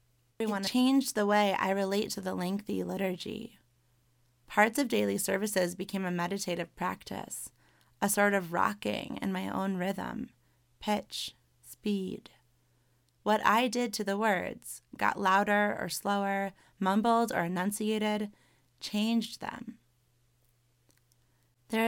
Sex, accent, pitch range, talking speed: female, American, 180-220 Hz, 120 wpm